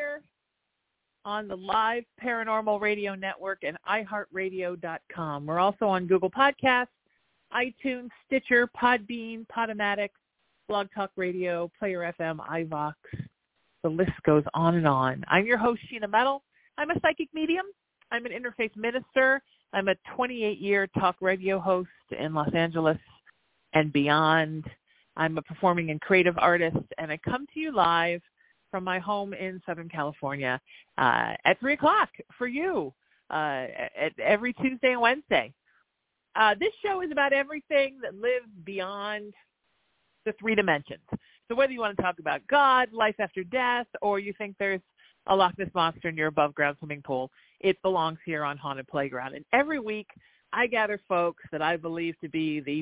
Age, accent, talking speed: 40-59, American, 155 wpm